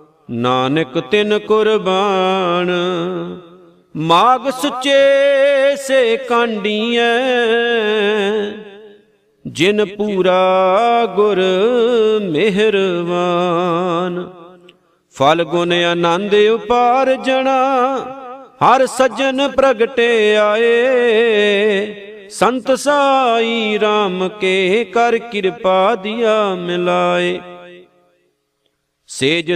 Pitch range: 170-235 Hz